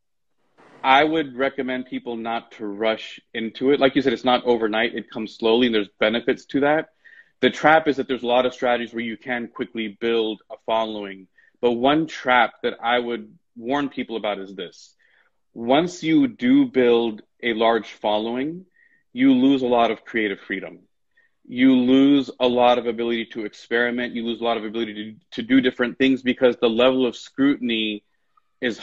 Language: English